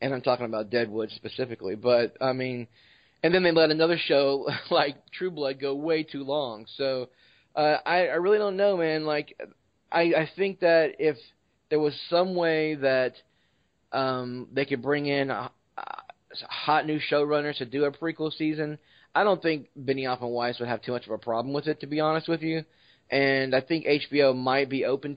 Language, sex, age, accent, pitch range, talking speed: English, male, 20-39, American, 125-150 Hz, 200 wpm